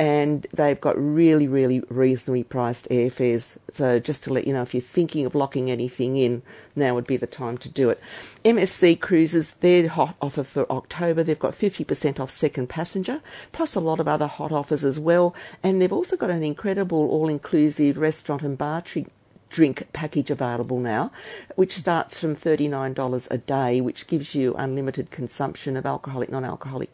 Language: English